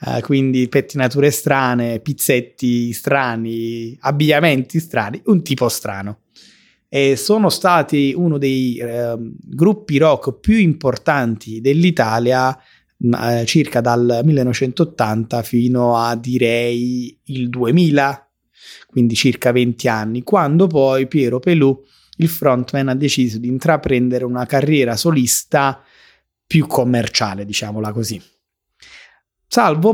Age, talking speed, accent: 30-49, 100 wpm, native